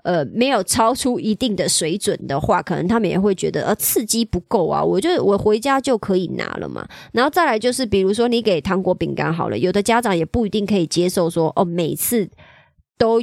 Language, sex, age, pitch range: Chinese, male, 30-49, 180-235 Hz